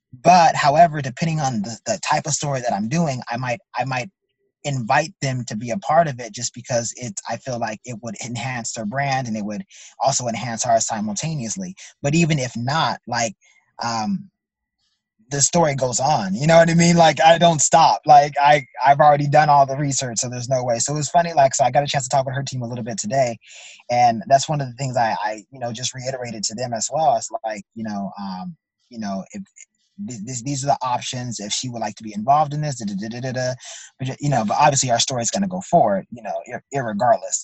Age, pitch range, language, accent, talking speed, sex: 20-39, 120-165 Hz, English, American, 230 wpm, male